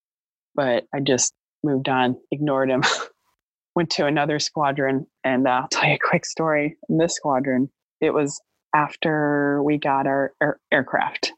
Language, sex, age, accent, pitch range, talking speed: English, female, 20-39, American, 130-155 Hz, 160 wpm